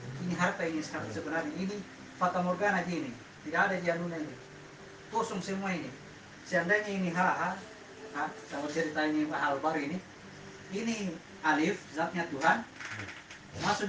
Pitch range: 170-230 Hz